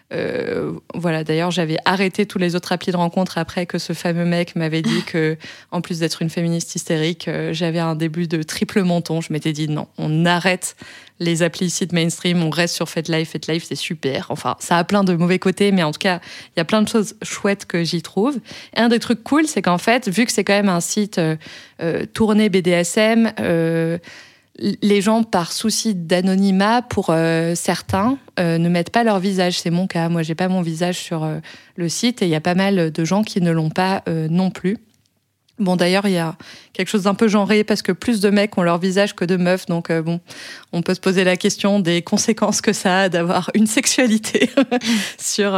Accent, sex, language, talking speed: French, female, French, 220 wpm